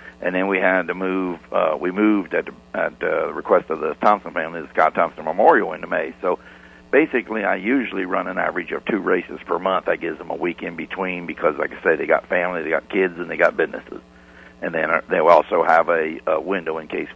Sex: male